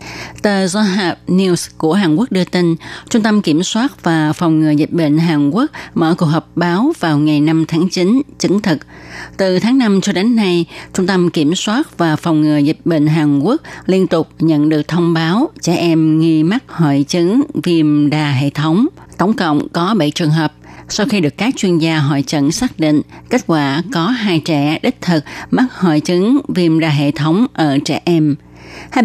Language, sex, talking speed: Vietnamese, female, 200 wpm